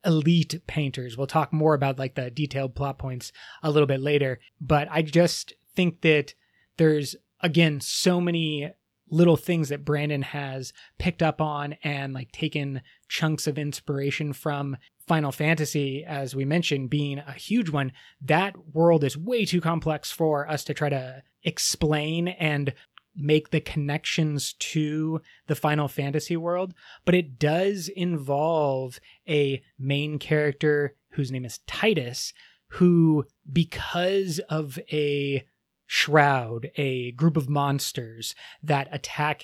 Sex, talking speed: male, 140 wpm